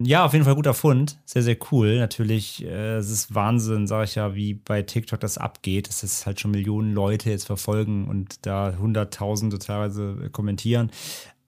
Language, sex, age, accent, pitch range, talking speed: German, male, 30-49, German, 105-130 Hz, 190 wpm